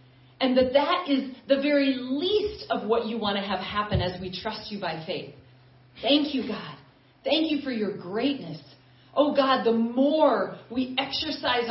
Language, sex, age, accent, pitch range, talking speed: English, female, 40-59, American, 225-285 Hz, 175 wpm